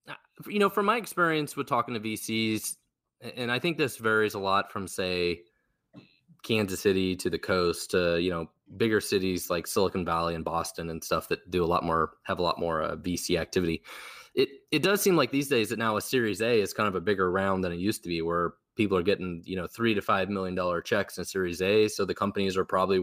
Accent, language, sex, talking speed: American, English, male, 235 wpm